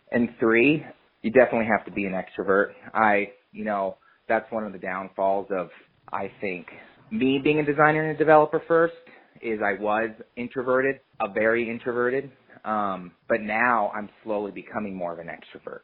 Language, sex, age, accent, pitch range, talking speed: English, male, 30-49, American, 95-120 Hz, 170 wpm